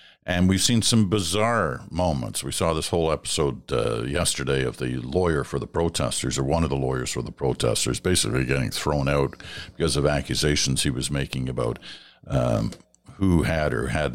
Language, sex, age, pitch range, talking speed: English, male, 60-79, 70-95 Hz, 180 wpm